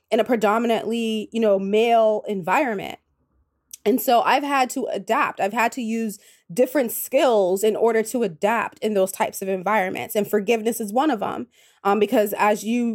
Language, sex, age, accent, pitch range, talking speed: English, female, 20-39, American, 205-250 Hz, 175 wpm